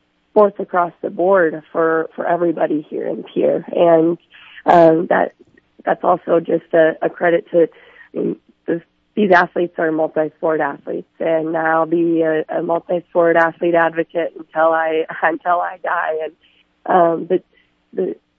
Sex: female